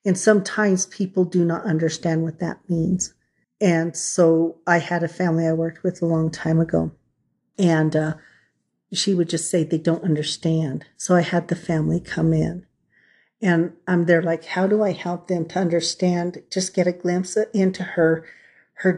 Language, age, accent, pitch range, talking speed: English, 50-69, American, 160-180 Hz, 180 wpm